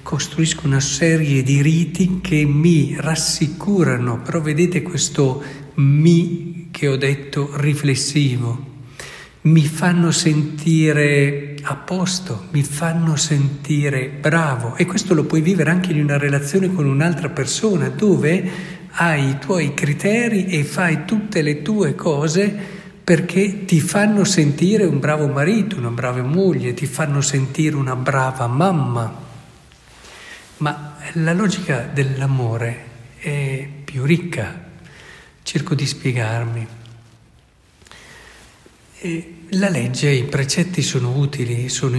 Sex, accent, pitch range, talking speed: male, native, 135-170 Hz, 115 wpm